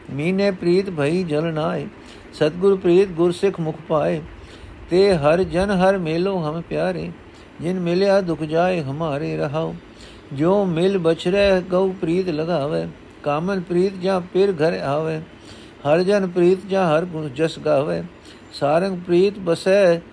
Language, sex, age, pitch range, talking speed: Punjabi, male, 50-69, 140-180 Hz, 140 wpm